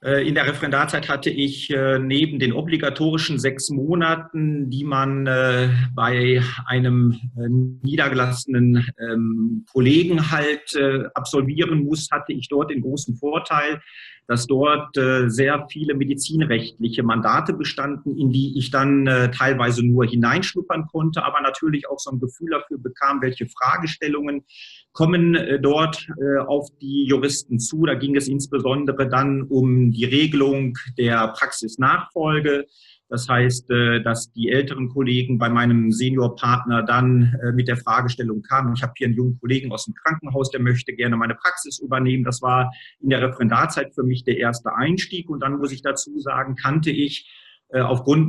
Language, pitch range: German, 125-145 Hz